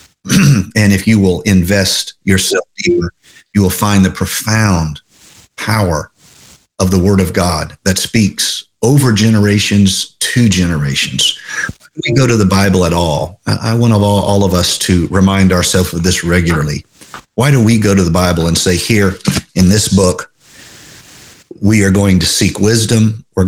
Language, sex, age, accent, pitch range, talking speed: English, male, 50-69, American, 90-115 Hz, 160 wpm